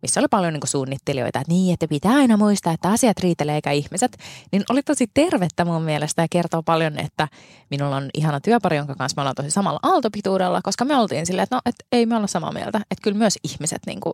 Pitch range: 145-205 Hz